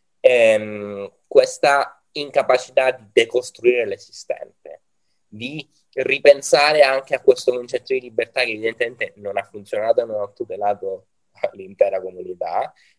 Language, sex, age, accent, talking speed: Italian, male, 20-39, native, 110 wpm